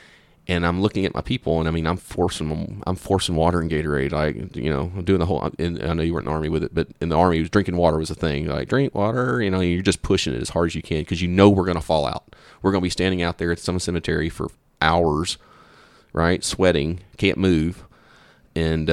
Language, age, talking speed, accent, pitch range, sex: English, 30-49, 265 wpm, American, 80-90 Hz, male